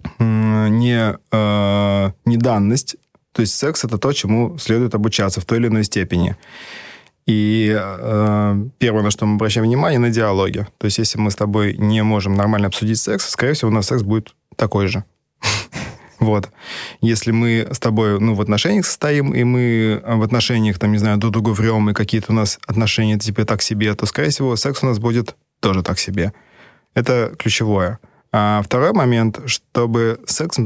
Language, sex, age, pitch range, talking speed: Russian, male, 20-39, 100-115 Hz, 170 wpm